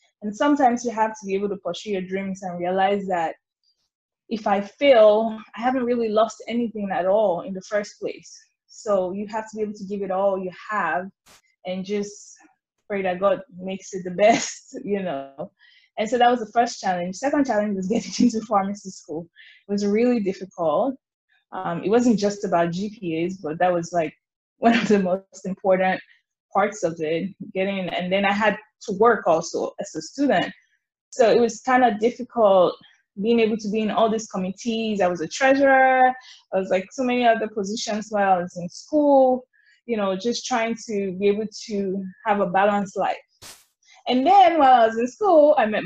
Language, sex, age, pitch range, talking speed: English, female, 10-29, 190-240 Hz, 195 wpm